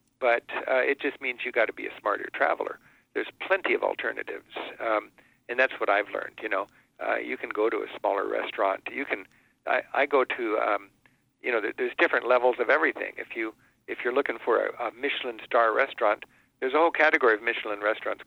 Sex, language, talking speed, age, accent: male, English, 200 wpm, 50-69, American